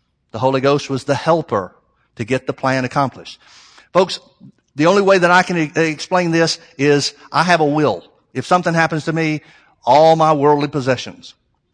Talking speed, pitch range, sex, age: 175 wpm, 140-175 Hz, male, 50-69